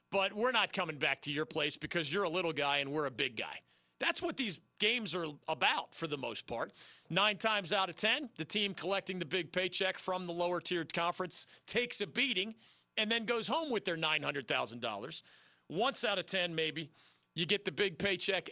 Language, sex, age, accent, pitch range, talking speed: English, male, 40-59, American, 150-225 Hz, 205 wpm